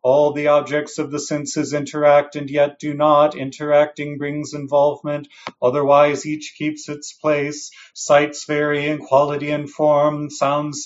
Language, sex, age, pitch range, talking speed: English, male, 30-49, 145-150 Hz, 145 wpm